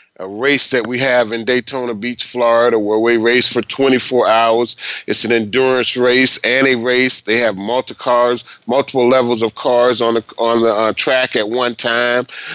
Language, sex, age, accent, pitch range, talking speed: English, male, 30-49, American, 125-180 Hz, 185 wpm